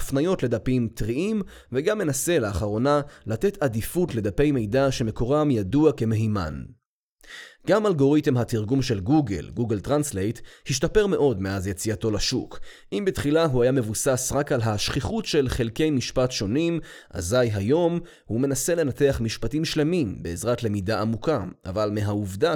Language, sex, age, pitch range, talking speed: Hebrew, male, 20-39, 110-150 Hz, 130 wpm